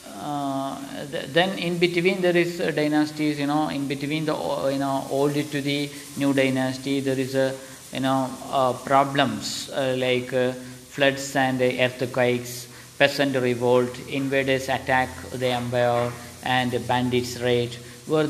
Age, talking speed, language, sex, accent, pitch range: 50-69, 140 wpm, Malayalam, male, native, 130-160 Hz